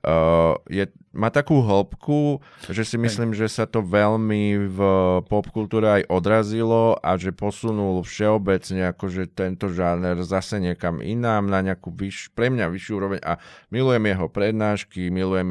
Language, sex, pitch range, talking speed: Slovak, male, 85-105 Hz, 145 wpm